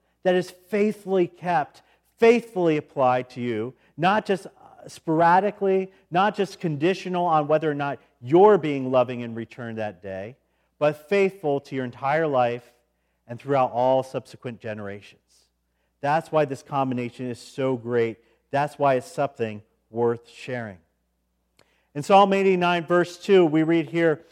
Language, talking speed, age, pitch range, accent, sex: English, 140 wpm, 40-59, 125-175 Hz, American, male